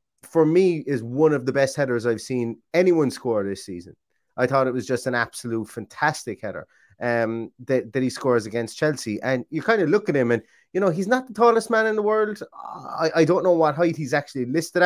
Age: 30-49